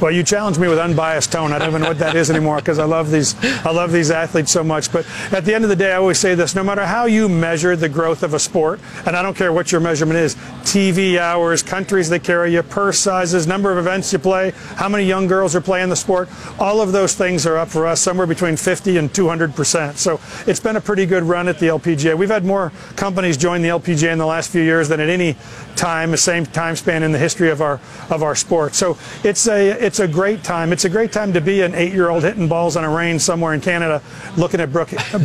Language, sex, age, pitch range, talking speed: English, male, 40-59, 160-185 Hz, 265 wpm